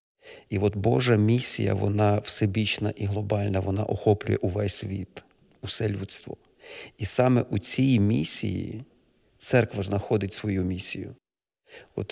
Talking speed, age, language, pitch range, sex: 120 wpm, 40-59, Ukrainian, 100-115 Hz, male